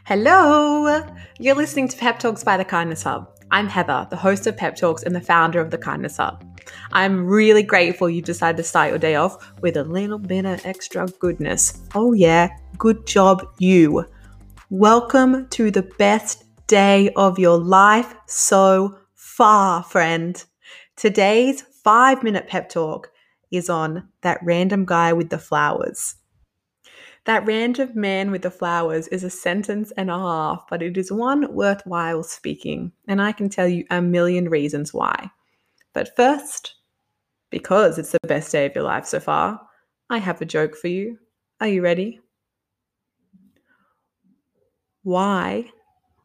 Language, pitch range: English, 170-215 Hz